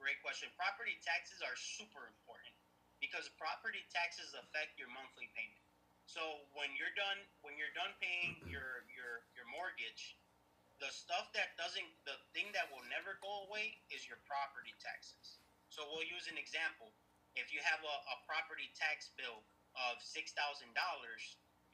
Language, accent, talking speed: English, American, 155 wpm